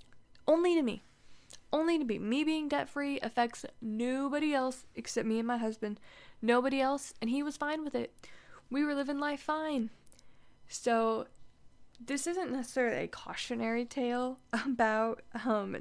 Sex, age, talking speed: female, 10-29, 150 wpm